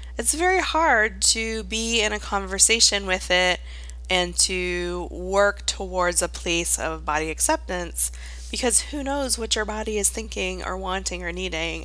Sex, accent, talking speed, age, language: female, American, 155 wpm, 20-39, English